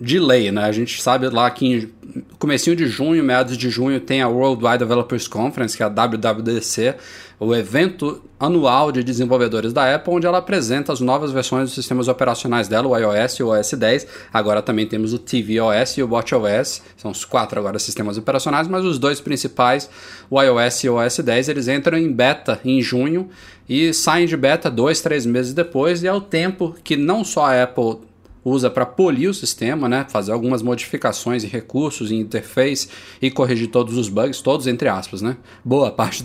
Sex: male